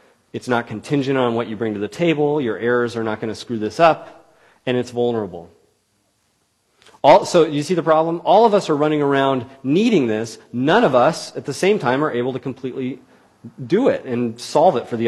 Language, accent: English, American